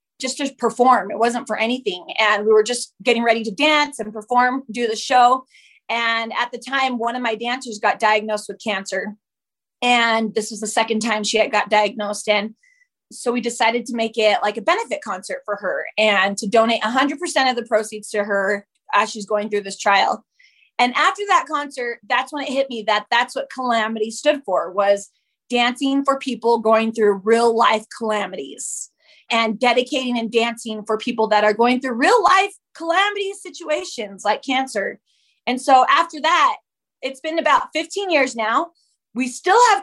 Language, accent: English, American